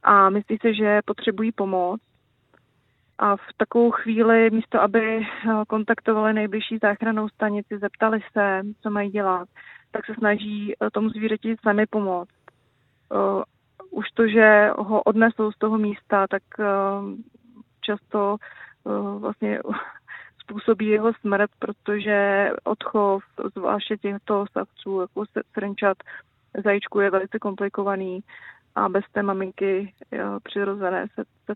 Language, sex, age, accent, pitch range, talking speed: Czech, female, 30-49, native, 195-220 Hz, 115 wpm